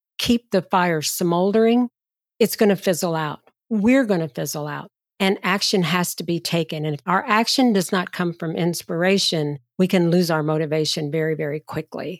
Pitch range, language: 155-200 Hz, English